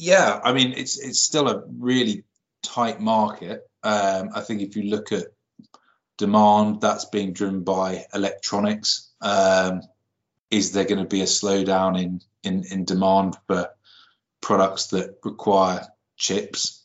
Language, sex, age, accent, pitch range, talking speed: English, male, 20-39, British, 95-110 Hz, 145 wpm